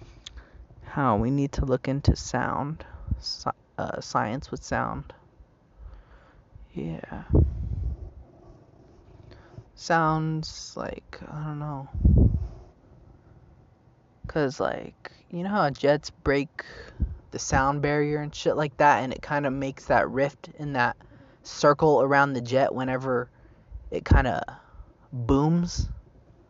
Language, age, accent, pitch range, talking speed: English, 20-39, American, 120-145 Hz, 110 wpm